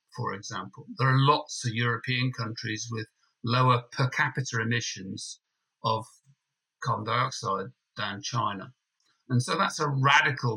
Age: 50-69